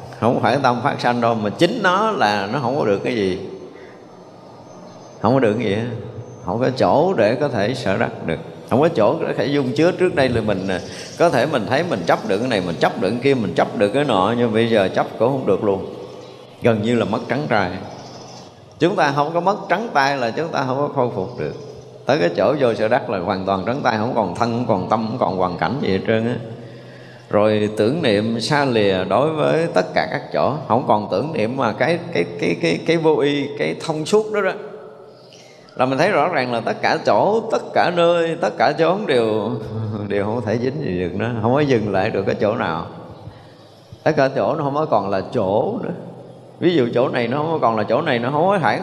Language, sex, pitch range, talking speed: Vietnamese, male, 110-155 Hz, 245 wpm